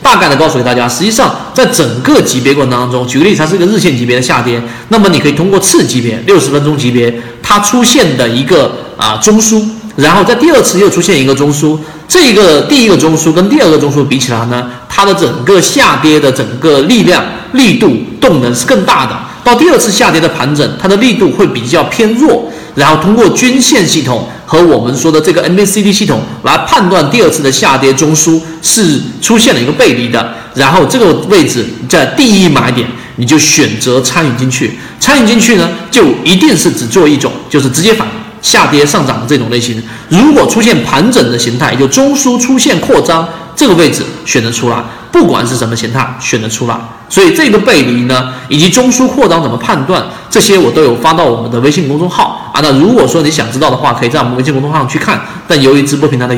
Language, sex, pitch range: Chinese, male, 125-180 Hz